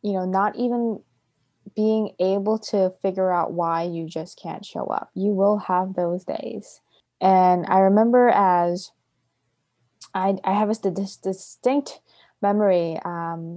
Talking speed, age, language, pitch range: 140 wpm, 20-39, English, 170-200 Hz